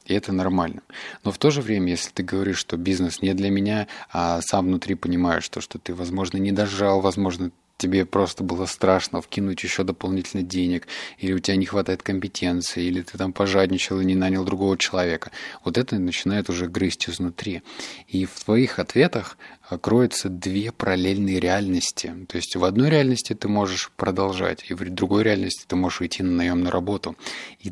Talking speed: 180 wpm